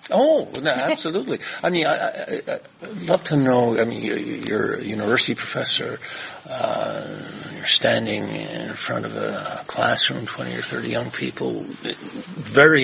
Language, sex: English, male